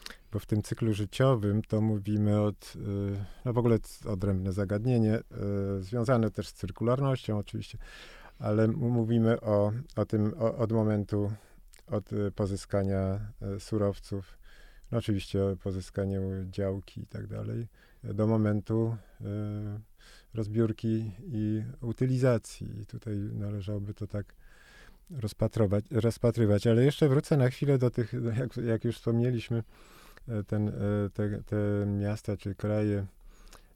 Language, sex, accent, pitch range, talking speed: Polish, male, native, 105-120 Hz, 115 wpm